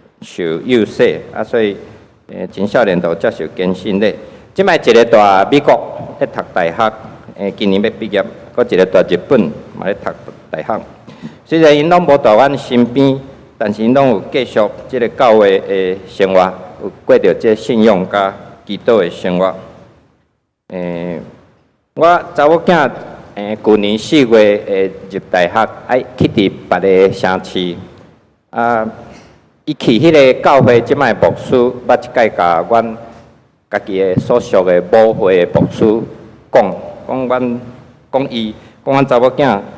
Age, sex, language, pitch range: 50-69, male, Chinese, 95-125 Hz